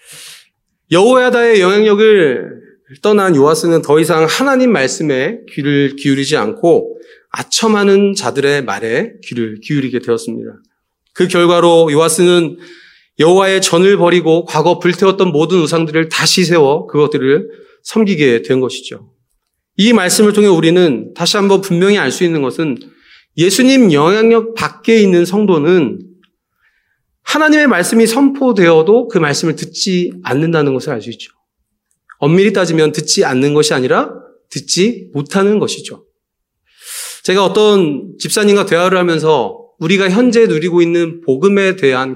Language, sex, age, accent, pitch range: Korean, male, 40-59, native, 150-210 Hz